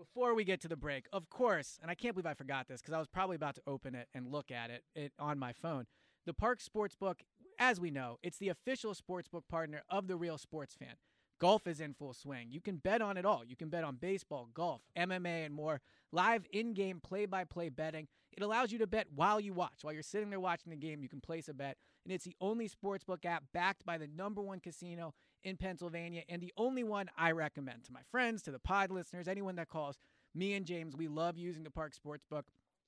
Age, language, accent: 30-49, English, American